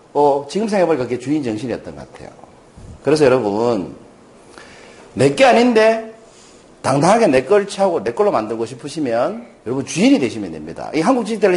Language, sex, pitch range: Korean, male, 155-235 Hz